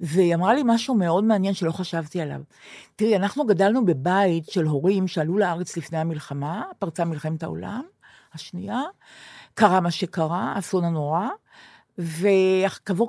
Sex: female